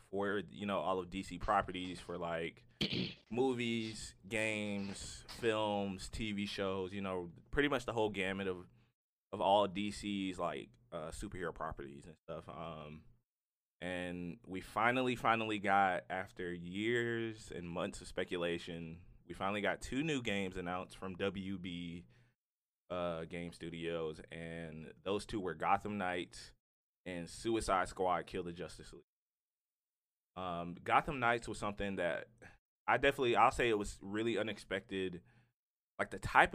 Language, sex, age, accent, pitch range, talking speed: English, male, 20-39, American, 85-105 Hz, 140 wpm